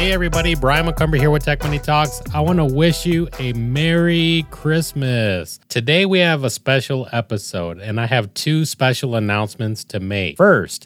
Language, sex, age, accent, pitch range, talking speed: English, male, 30-49, American, 115-150 Hz, 175 wpm